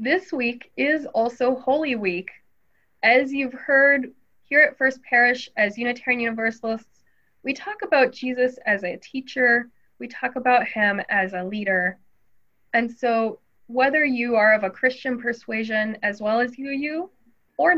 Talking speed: 150 wpm